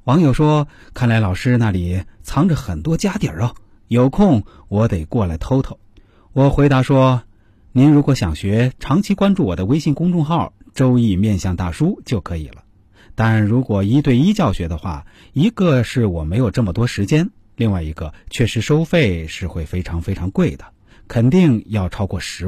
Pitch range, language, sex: 100-140 Hz, Chinese, male